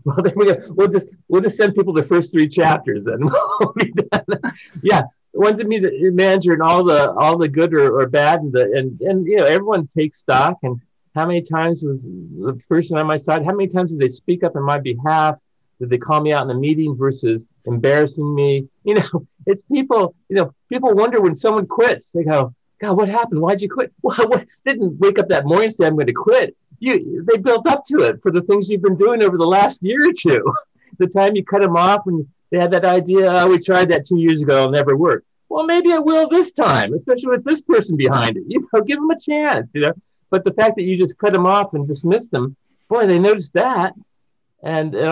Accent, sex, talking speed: American, male, 240 wpm